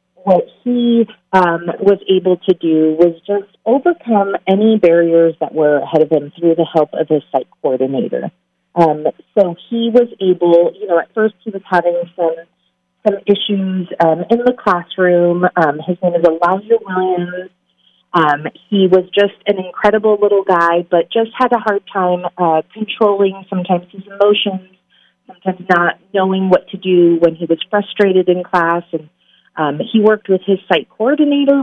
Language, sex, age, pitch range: English, female, 30-49, 165-205 Hz